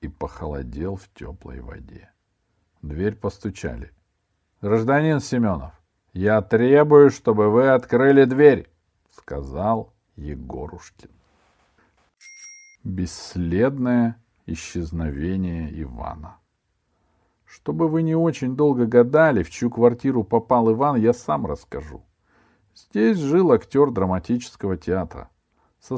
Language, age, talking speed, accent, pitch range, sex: Russian, 50-69, 90 wpm, native, 90-125 Hz, male